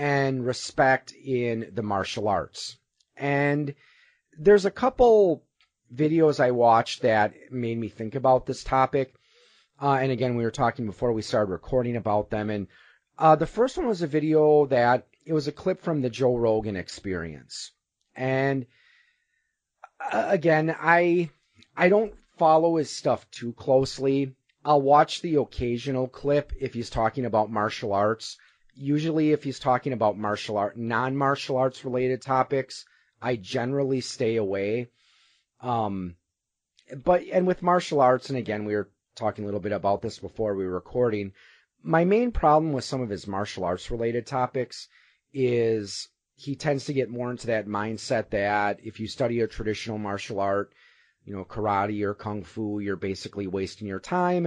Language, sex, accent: English, male, American